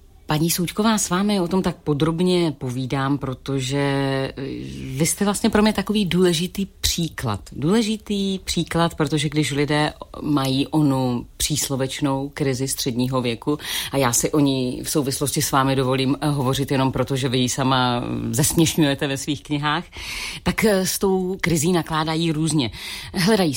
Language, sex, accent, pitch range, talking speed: Czech, female, native, 135-160 Hz, 145 wpm